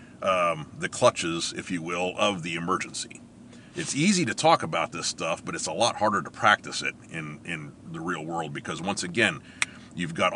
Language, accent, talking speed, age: English, American, 195 wpm, 40-59